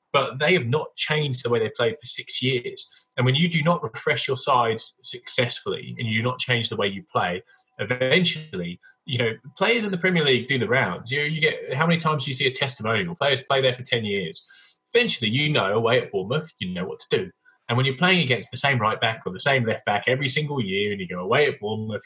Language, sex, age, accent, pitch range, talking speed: English, male, 20-39, British, 120-175 Hz, 250 wpm